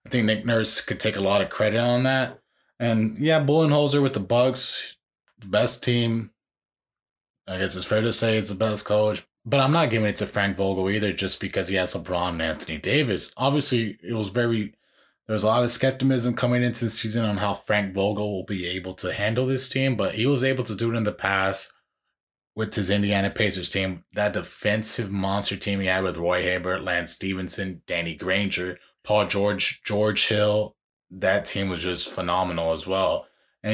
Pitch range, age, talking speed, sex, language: 100-125 Hz, 20-39, 200 wpm, male, English